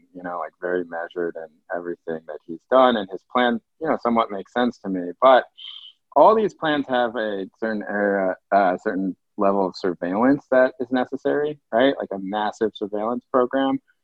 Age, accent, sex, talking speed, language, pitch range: 30-49, American, male, 180 wpm, English, 95-120 Hz